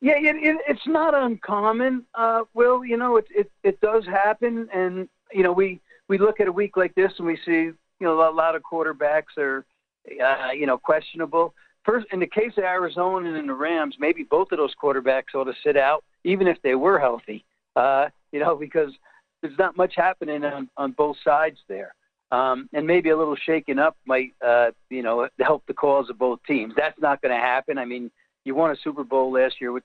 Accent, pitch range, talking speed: American, 130-190 Hz, 215 wpm